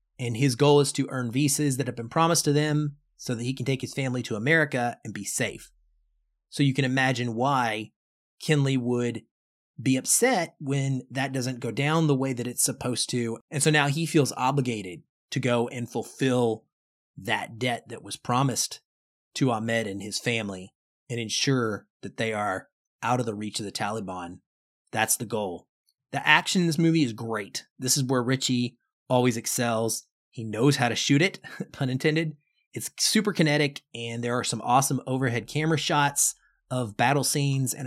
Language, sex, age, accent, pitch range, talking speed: English, male, 30-49, American, 115-145 Hz, 185 wpm